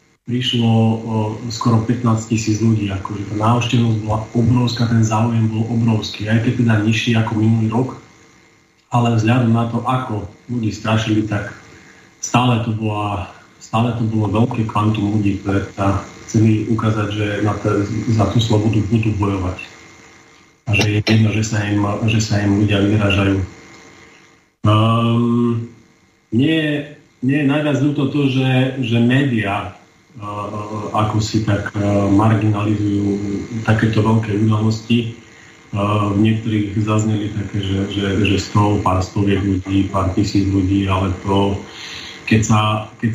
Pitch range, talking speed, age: 105-120 Hz, 135 wpm, 40-59